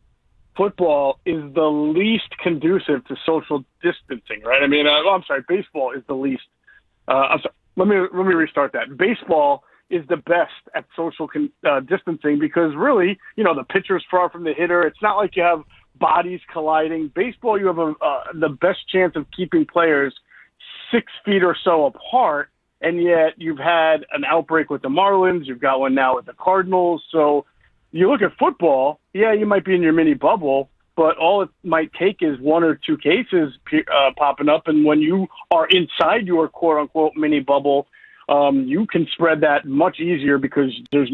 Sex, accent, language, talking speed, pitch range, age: male, American, English, 185 wpm, 145-180 Hz, 40-59